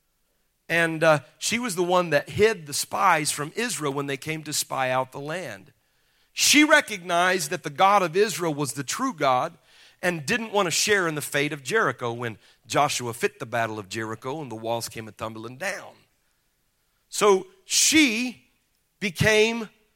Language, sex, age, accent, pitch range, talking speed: English, male, 40-59, American, 140-210 Hz, 170 wpm